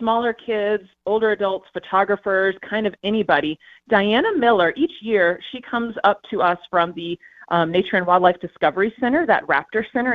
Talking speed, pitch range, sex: 165 wpm, 175-235 Hz, female